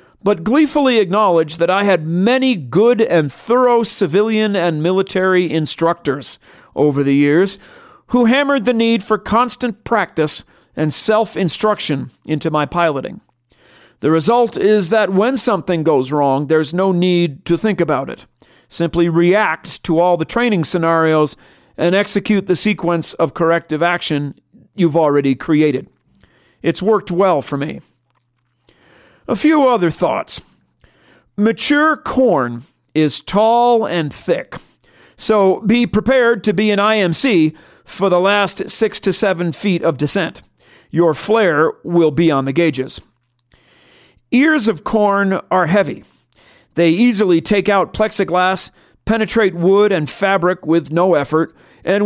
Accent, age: American, 50-69